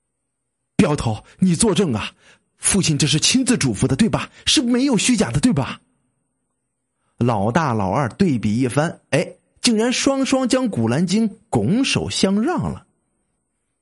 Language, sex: Chinese, male